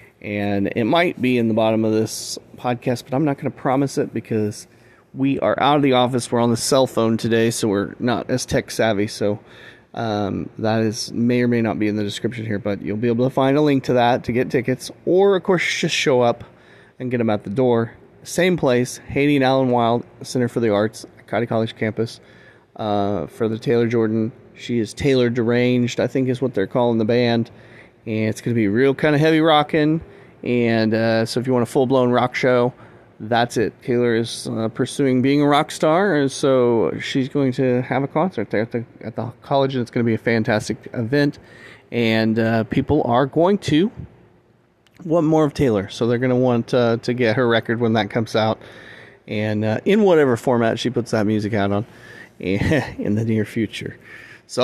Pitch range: 110-135 Hz